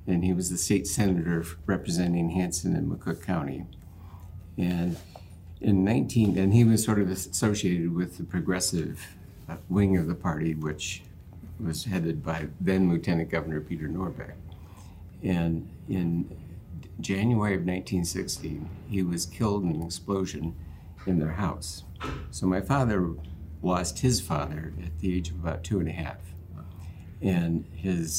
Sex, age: male, 60-79